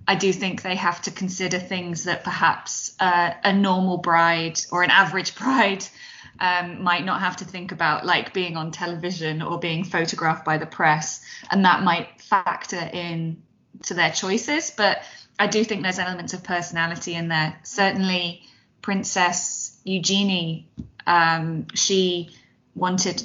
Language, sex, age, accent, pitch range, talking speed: Italian, female, 20-39, British, 170-190 Hz, 150 wpm